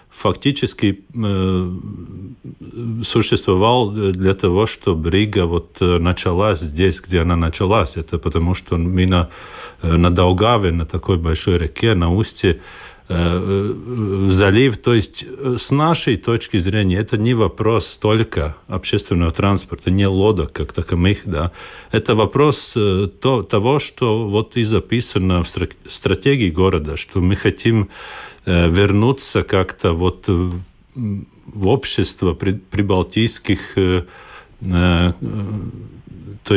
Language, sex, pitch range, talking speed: Russian, male, 90-115 Hz, 125 wpm